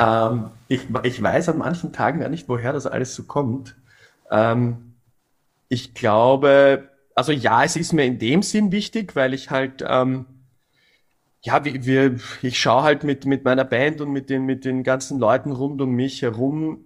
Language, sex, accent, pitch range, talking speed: German, male, German, 115-135 Hz, 180 wpm